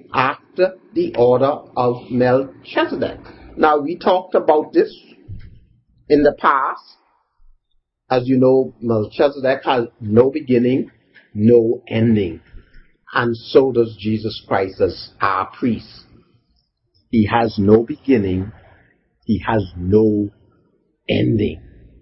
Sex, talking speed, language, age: male, 105 wpm, English, 50-69